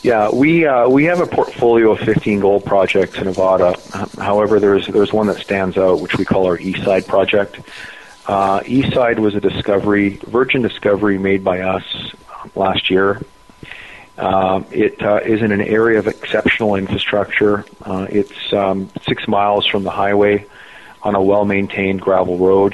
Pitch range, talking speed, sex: 95-105 Hz, 160 wpm, male